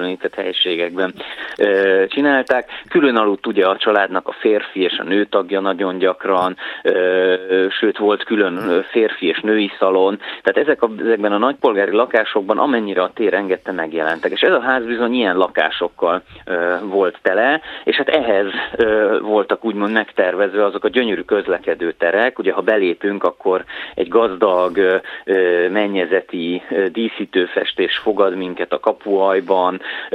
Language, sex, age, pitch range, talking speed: Hungarian, male, 30-49, 90-105 Hz, 125 wpm